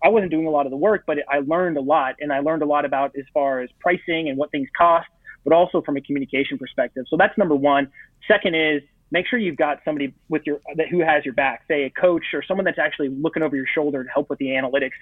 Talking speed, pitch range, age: 270 wpm, 140-175 Hz, 30-49